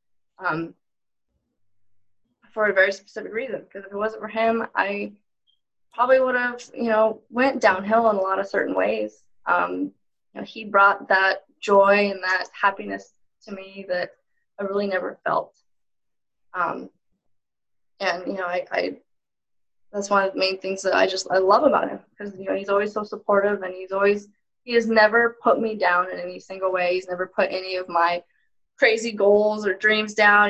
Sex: female